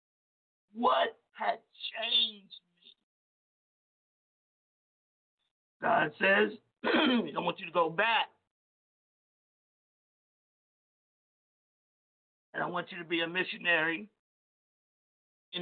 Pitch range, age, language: 195-240 Hz, 50-69, English